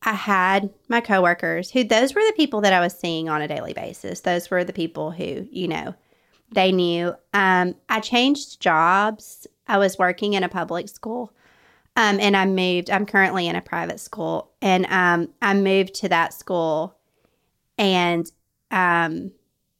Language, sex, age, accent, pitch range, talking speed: English, female, 30-49, American, 175-205 Hz, 170 wpm